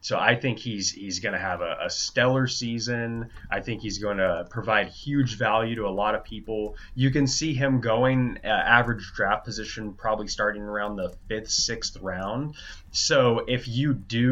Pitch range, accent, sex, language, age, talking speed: 100-120 Hz, American, male, English, 20-39, 180 wpm